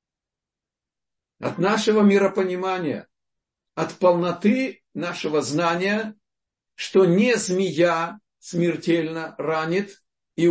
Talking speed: 75 wpm